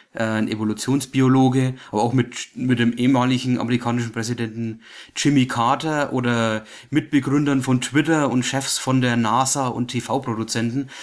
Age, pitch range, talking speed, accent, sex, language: 30-49, 115-145 Hz, 125 wpm, German, male, English